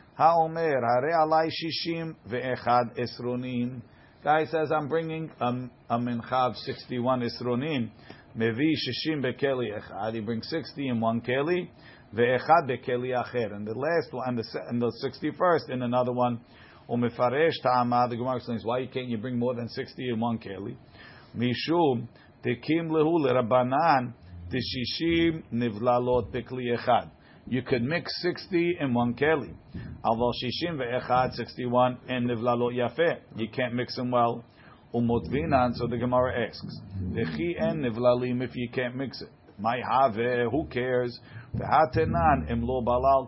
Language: English